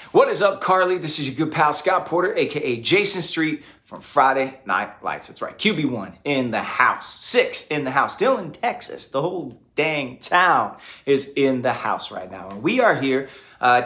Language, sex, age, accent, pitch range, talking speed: English, male, 30-49, American, 115-140 Hz, 200 wpm